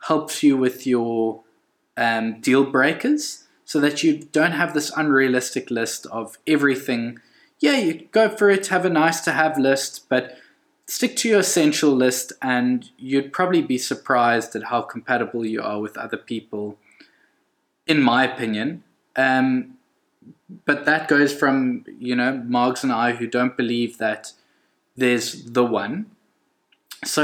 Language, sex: English, male